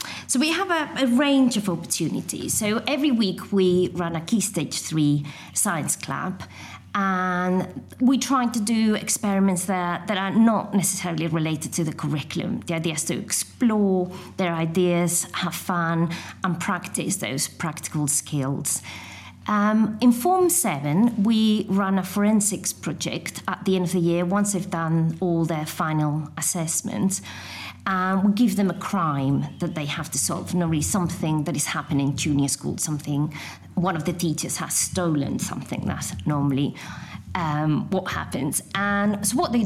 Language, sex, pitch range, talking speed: English, female, 155-205 Hz, 160 wpm